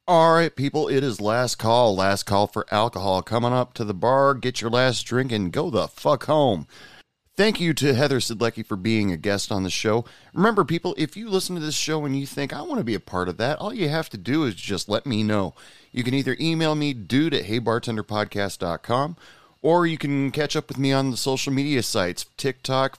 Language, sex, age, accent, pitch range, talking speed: English, male, 30-49, American, 105-140 Hz, 230 wpm